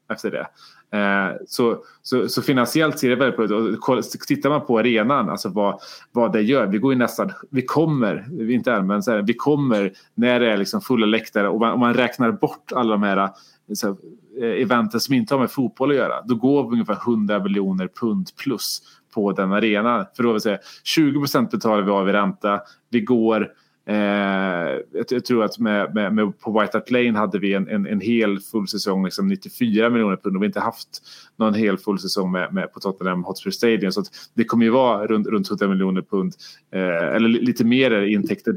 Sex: male